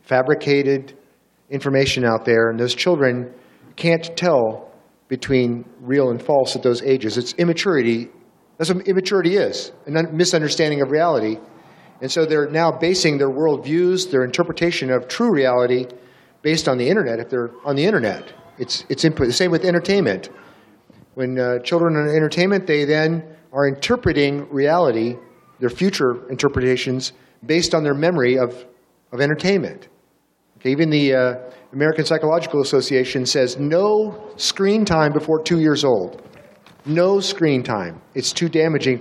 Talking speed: 150 wpm